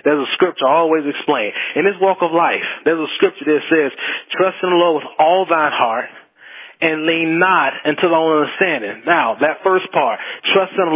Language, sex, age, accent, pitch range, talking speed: English, male, 30-49, American, 175-230 Hz, 205 wpm